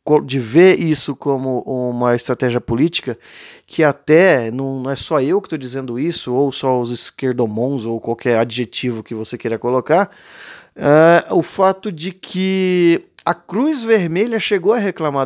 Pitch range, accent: 130-180 Hz, Brazilian